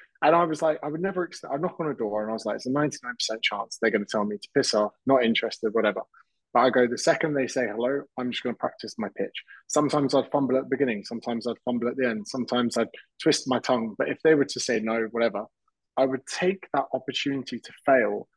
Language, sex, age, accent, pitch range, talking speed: English, male, 20-39, British, 120-150 Hz, 255 wpm